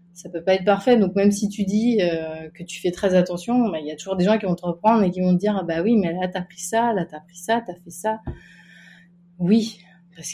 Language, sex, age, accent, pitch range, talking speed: French, female, 30-49, French, 170-205 Hz, 280 wpm